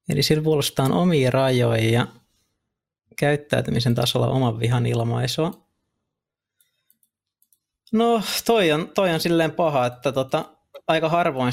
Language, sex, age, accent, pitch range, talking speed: Finnish, male, 20-39, native, 120-140 Hz, 110 wpm